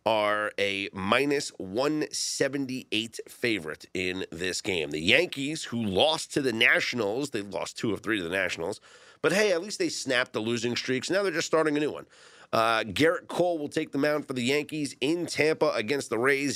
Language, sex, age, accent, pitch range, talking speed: English, male, 30-49, American, 110-160 Hz, 195 wpm